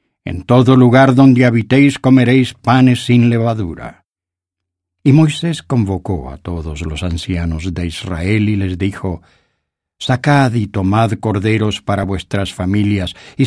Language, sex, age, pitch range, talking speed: English, male, 50-69, 95-125 Hz, 130 wpm